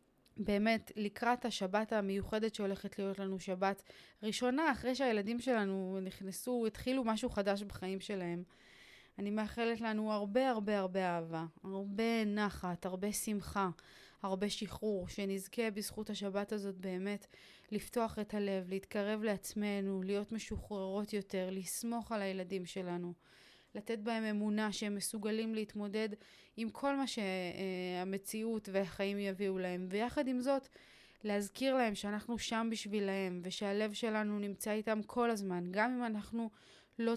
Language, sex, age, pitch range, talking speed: Hebrew, female, 20-39, 195-225 Hz, 130 wpm